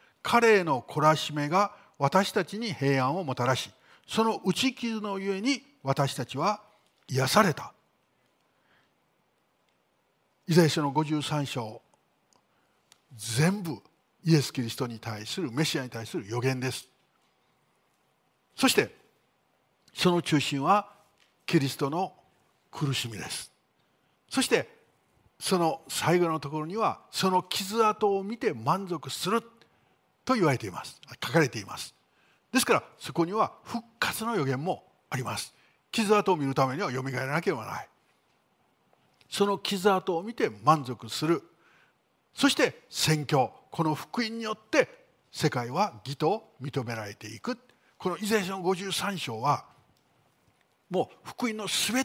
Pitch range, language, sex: 135-200 Hz, Japanese, male